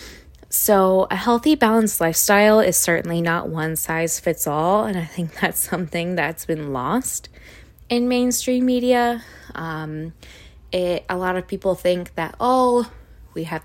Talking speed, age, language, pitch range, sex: 145 wpm, 20-39, English, 180-235 Hz, female